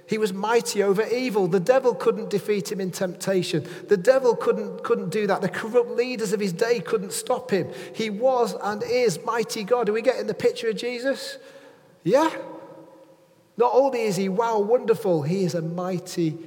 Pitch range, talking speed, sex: 160-215 Hz, 190 wpm, male